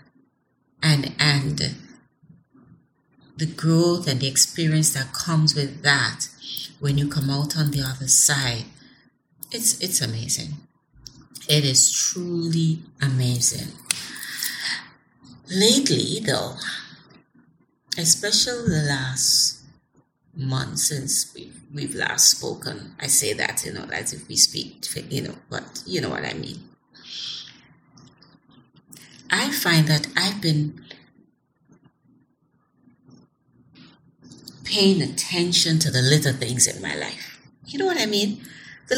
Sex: female